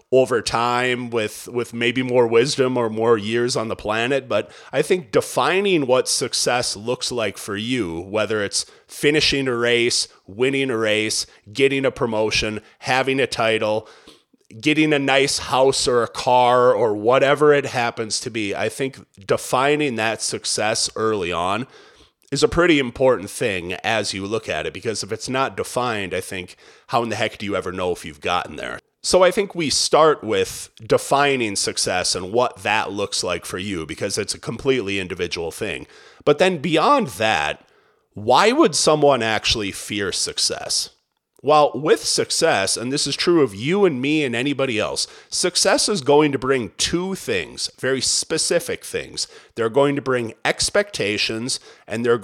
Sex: male